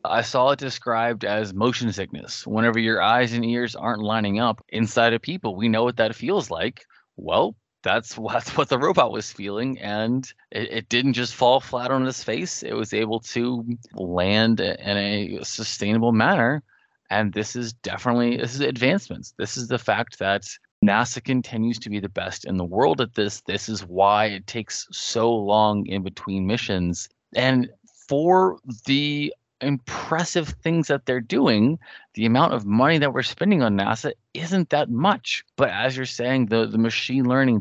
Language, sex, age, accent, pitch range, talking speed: English, male, 20-39, American, 105-125 Hz, 180 wpm